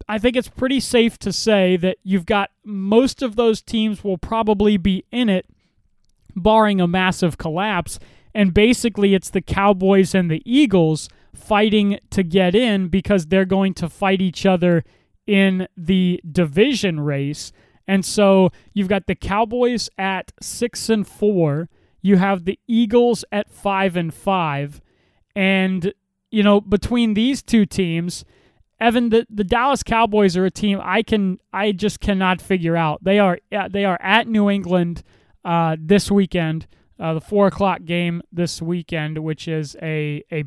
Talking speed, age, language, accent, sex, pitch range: 160 wpm, 20-39, English, American, male, 175-215 Hz